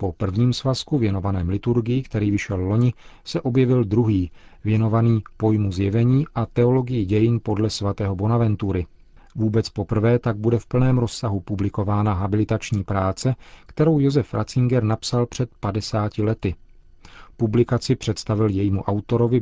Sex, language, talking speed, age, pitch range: male, Czech, 125 wpm, 40-59, 100-120 Hz